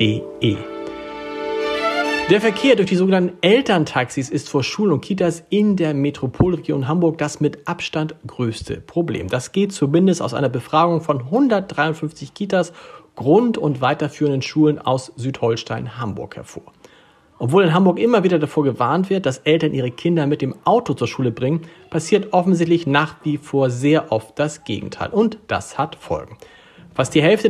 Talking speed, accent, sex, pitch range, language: 155 wpm, German, male, 135-170 Hz, German